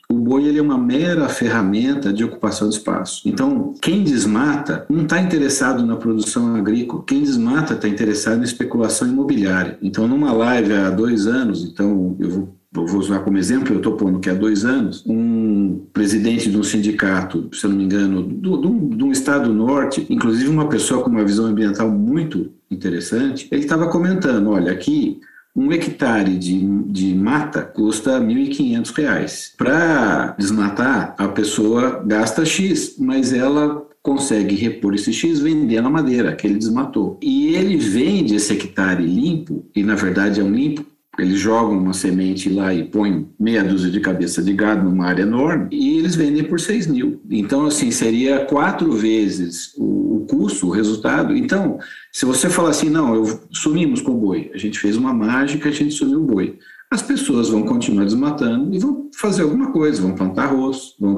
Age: 50-69